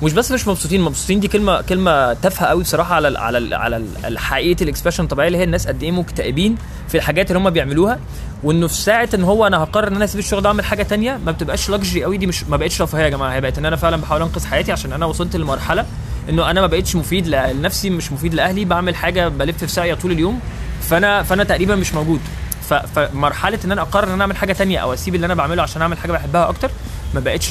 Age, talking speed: 20-39, 235 wpm